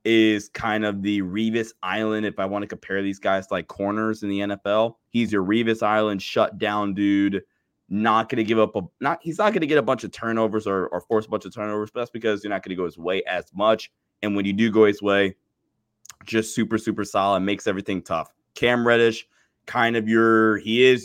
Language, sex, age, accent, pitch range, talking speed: English, male, 20-39, American, 100-115 Hz, 220 wpm